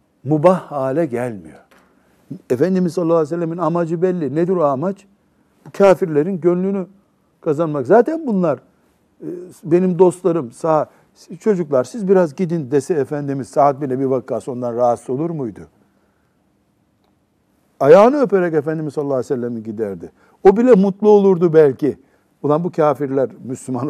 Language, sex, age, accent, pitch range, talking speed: Turkish, male, 60-79, native, 135-185 Hz, 120 wpm